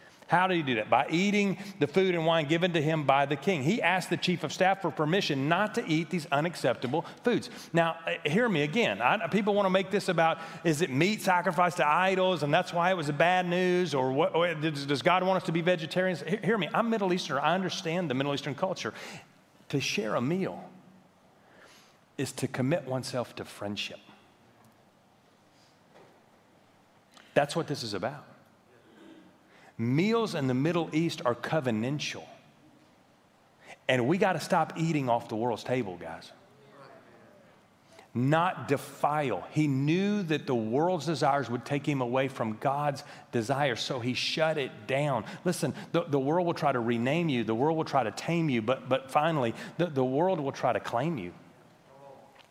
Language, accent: English, American